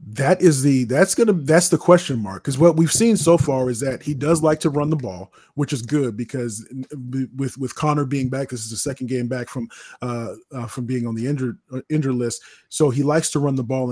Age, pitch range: 30-49, 125-150 Hz